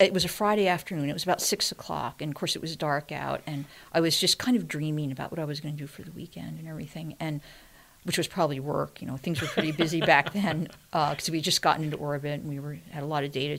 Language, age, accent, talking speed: English, 50-69, American, 285 wpm